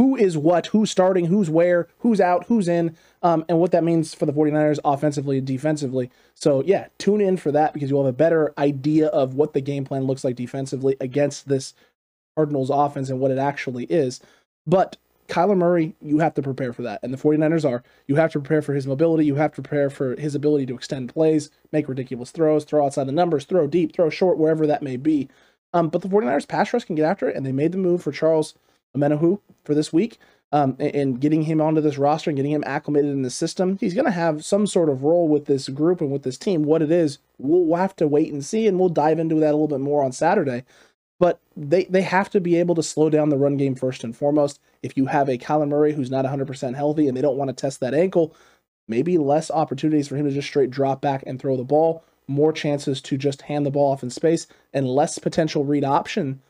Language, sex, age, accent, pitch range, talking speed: English, male, 20-39, American, 140-165 Hz, 245 wpm